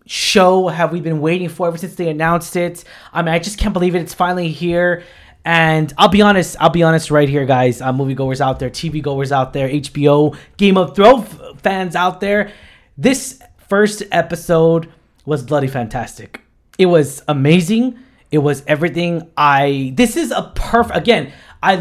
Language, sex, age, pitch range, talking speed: English, male, 20-39, 145-185 Hz, 185 wpm